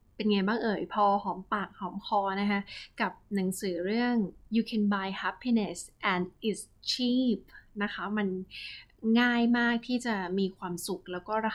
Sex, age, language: female, 20-39, Thai